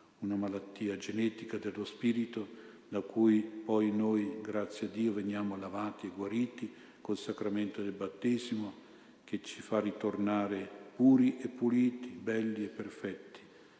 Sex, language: male, Italian